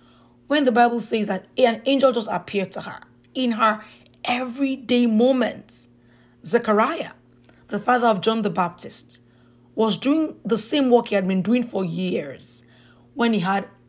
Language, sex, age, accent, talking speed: English, female, 40-59, Nigerian, 155 wpm